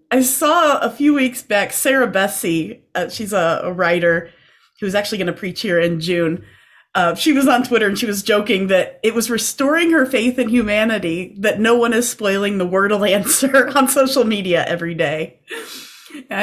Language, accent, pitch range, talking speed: English, American, 175-255 Hz, 195 wpm